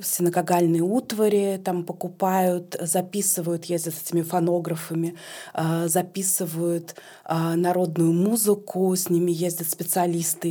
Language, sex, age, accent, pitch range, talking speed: Russian, female, 20-39, native, 165-190 Hz, 90 wpm